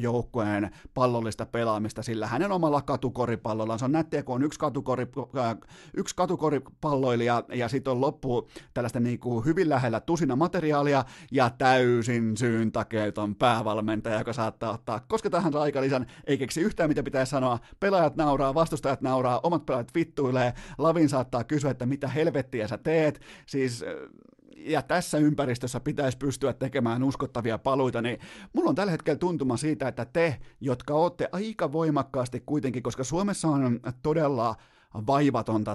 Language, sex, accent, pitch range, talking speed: Finnish, male, native, 115-150 Hz, 145 wpm